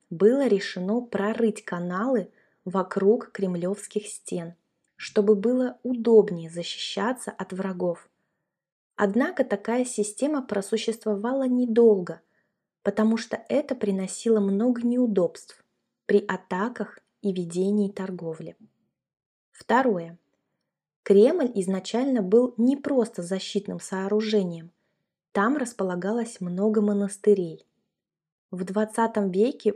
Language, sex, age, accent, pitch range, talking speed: Russian, female, 20-39, native, 185-230 Hz, 90 wpm